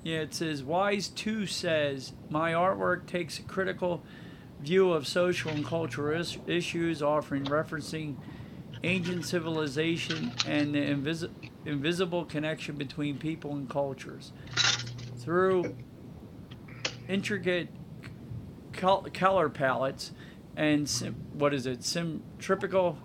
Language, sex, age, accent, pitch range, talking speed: English, male, 50-69, American, 145-165 Hz, 100 wpm